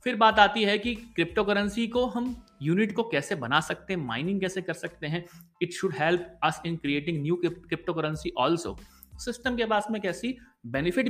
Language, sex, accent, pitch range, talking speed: Hindi, male, native, 150-215 Hz, 195 wpm